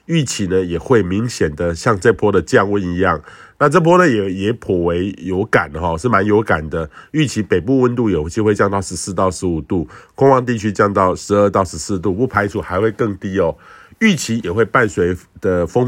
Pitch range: 90-120 Hz